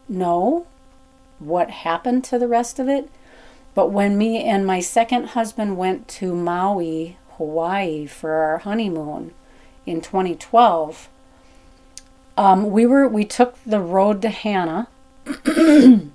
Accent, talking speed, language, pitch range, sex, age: American, 125 wpm, English, 170-235 Hz, female, 40-59